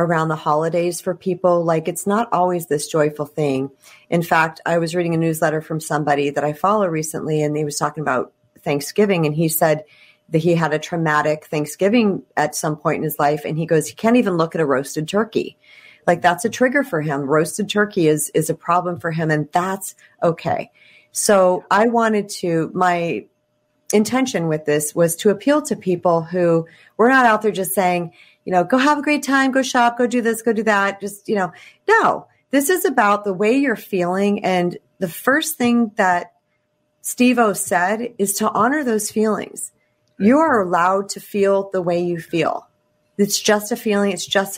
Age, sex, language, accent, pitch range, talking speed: 40-59, female, English, American, 160-210 Hz, 200 wpm